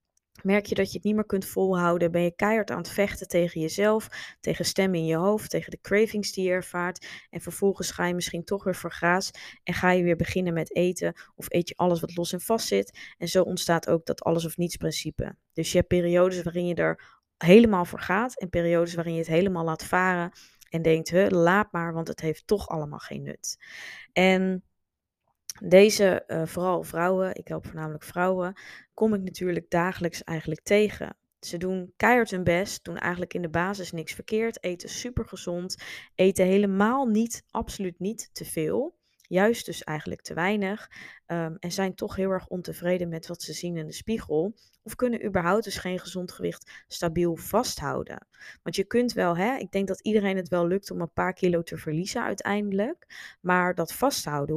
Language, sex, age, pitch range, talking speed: Dutch, female, 20-39, 170-195 Hz, 190 wpm